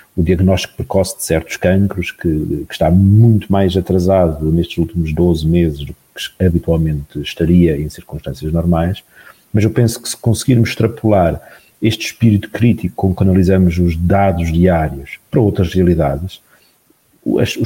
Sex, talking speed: male, 145 wpm